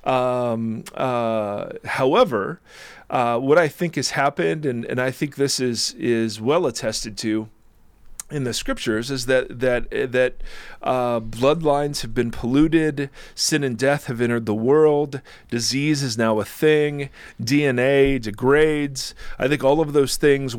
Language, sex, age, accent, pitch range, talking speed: English, male, 40-59, American, 120-145 Hz, 150 wpm